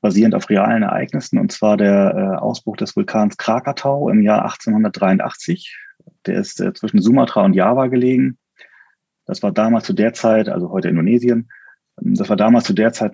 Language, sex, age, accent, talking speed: German, male, 30-49, German, 165 wpm